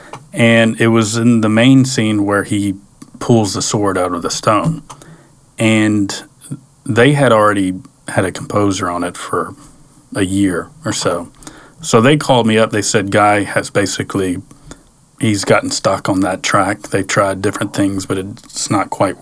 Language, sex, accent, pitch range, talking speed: English, male, American, 100-120 Hz, 170 wpm